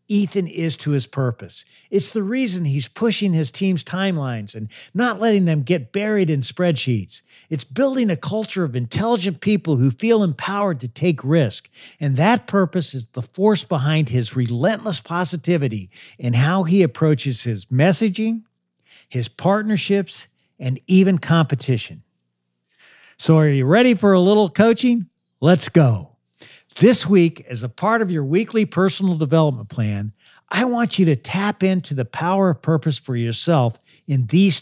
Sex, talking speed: male, 155 wpm